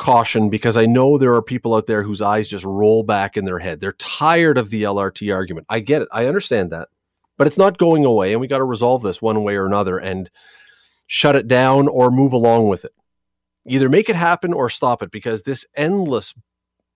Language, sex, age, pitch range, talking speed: English, male, 40-59, 105-145 Hz, 225 wpm